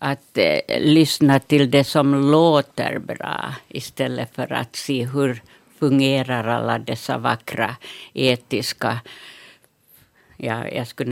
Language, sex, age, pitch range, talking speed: Finnish, female, 60-79, 130-155 Hz, 105 wpm